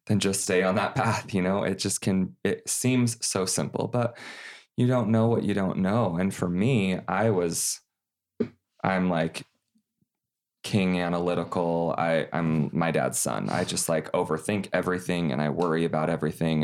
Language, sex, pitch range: English, male, 90-105 Hz